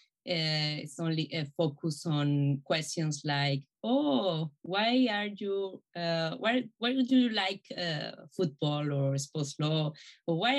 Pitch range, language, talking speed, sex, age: 150-200 Hz, English, 140 wpm, female, 20-39